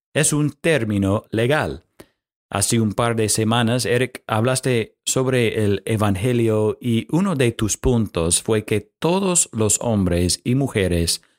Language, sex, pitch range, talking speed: Spanish, male, 105-135 Hz, 135 wpm